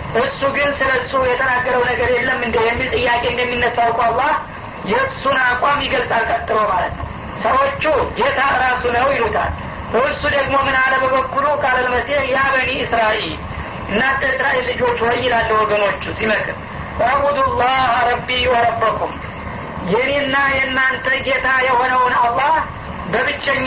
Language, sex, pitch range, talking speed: Amharic, female, 245-275 Hz, 95 wpm